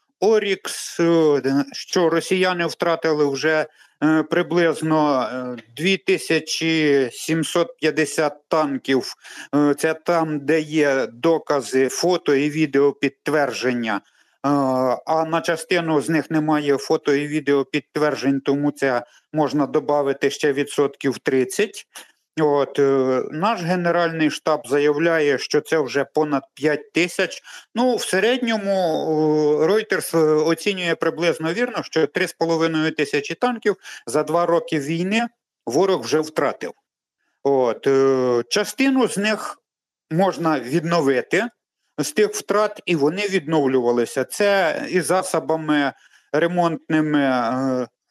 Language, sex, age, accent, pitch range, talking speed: Ukrainian, male, 50-69, native, 140-170 Hz, 100 wpm